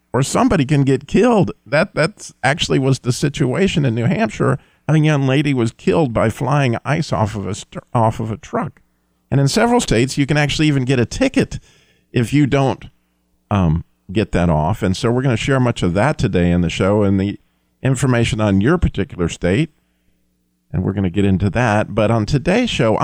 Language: English